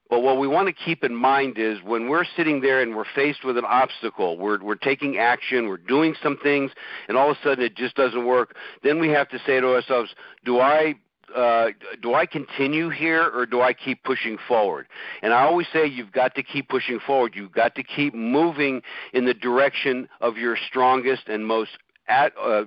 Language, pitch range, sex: English, 120-145 Hz, male